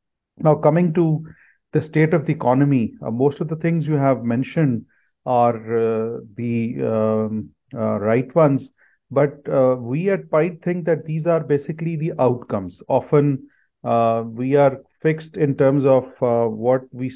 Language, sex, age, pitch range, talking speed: Urdu, male, 40-59, 115-150 Hz, 160 wpm